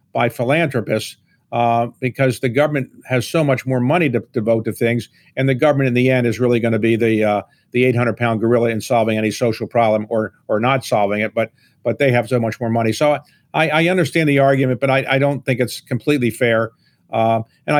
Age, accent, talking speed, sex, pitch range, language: 50-69, American, 225 wpm, male, 120-140 Hz, English